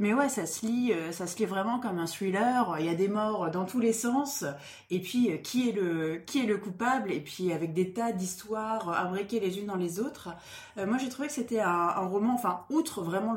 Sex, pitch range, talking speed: female, 180-235 Hz, 225 wpm